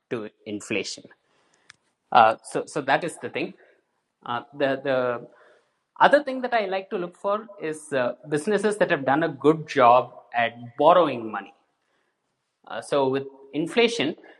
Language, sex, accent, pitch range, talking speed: English, male, Indian, 125-190 Hz, 150 wpm